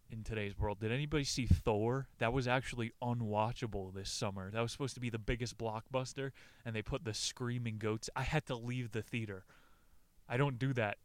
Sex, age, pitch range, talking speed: male, 20-39, 105-120 Hz, 200 wpm